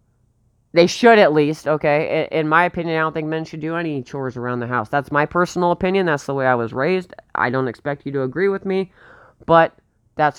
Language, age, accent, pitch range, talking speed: English, 30-49, American, 125-165 Hz, 225 wpm